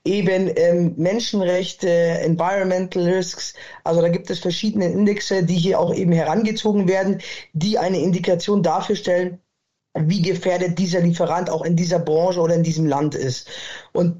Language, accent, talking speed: German, German, 155 wpm